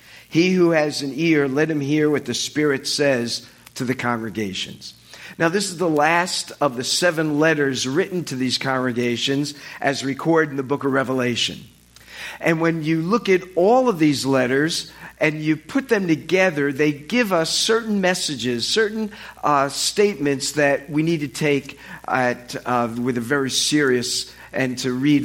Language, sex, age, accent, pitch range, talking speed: English, male, 50-69, American, 130-160 Hz, 165 wpm